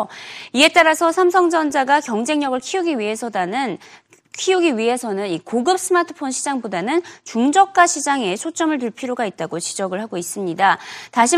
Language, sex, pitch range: Korean, female, 215-325 Hz